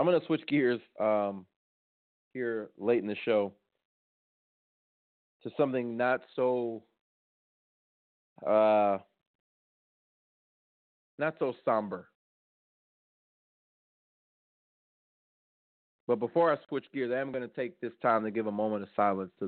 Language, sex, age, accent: English, male, 30-49, American